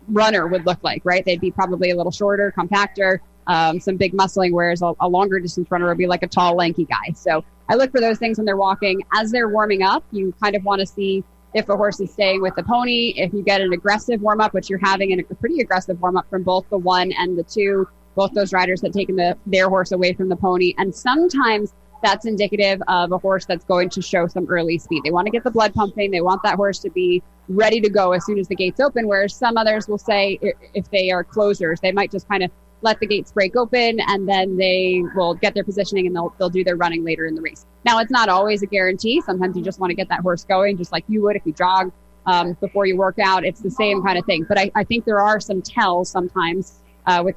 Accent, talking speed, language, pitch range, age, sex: American, 255 wpm, English, 180-205 Hz, 20-39, female